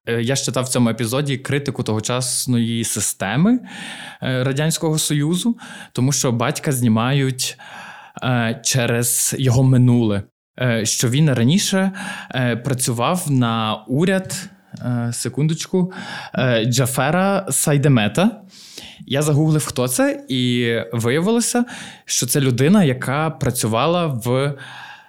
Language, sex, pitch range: Ukrainian, male, 120-160 Hz